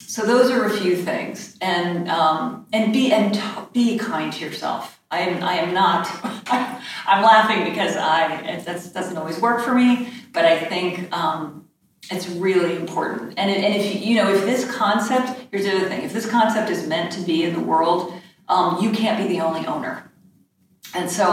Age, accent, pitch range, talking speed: 40-59, American, 175-225 Hz, 195 wpm